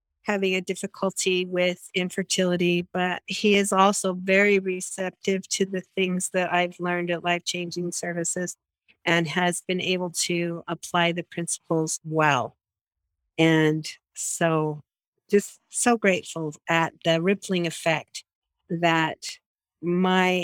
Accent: American